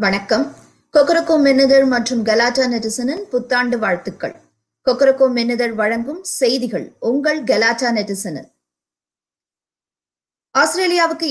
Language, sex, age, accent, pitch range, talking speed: Tamil, female, 20-39, native, 220-275 Hz, 85 wpm